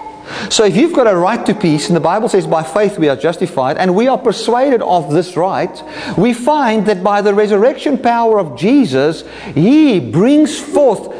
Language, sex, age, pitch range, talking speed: English, male, 50-69, 155-225 Hz, 195 wpm